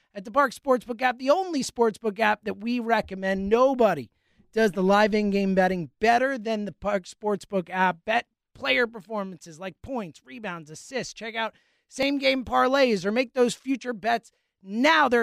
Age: 30-49